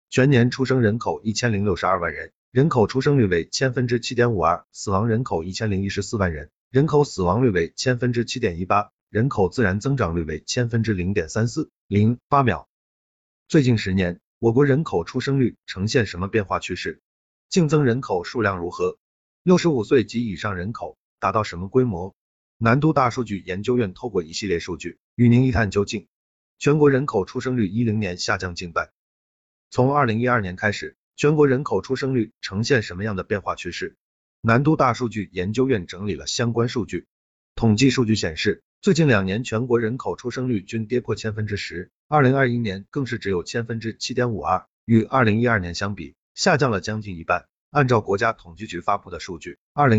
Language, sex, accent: Chinese, male, native